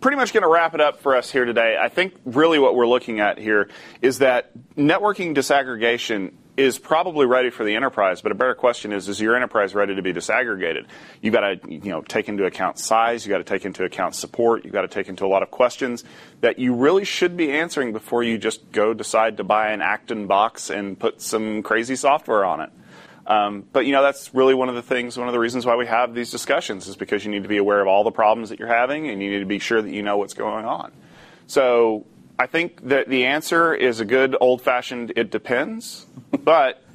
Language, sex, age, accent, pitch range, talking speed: English, male, 30-49, American, 105-135 Hz, 240 wpm